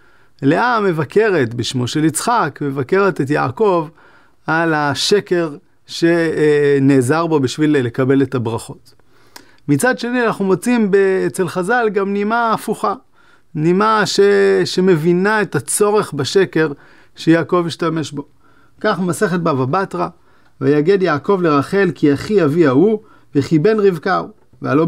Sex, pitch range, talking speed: male, 140-205 Hz, 115 wpm